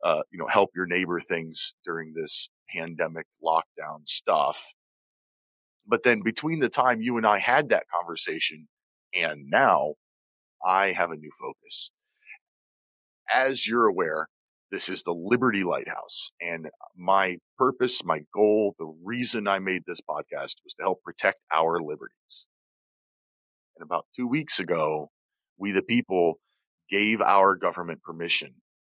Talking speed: 140 wpm